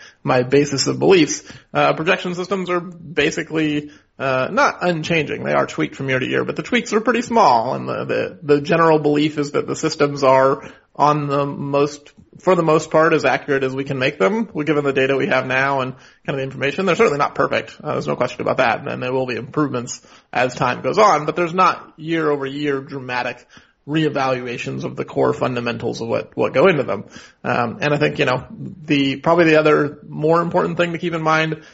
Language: English